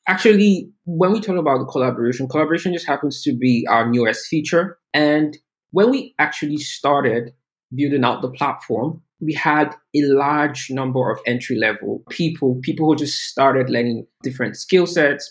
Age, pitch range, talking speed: 20-39, 125-155 Hz, 155 wpm